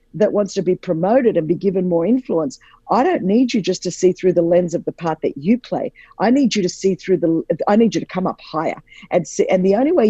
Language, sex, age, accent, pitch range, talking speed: English, female, 50-69, Australian, 180-235 Hz, 275 wpm